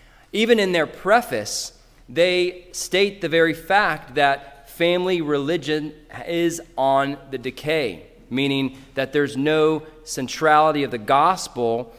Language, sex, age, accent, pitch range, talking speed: English, male, 30-49, American, 130-165 Hz, 120 wpm